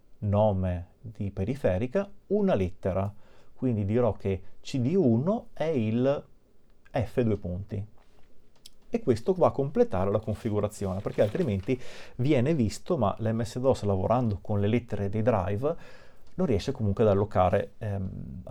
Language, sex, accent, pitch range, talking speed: Italian, male, native, 100-120 Hz, 125 wpm